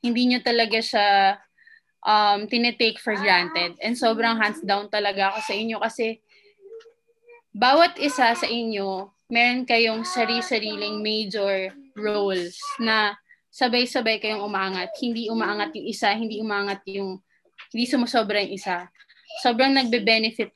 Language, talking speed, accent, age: English, 125 wpm, Filipino, 20-39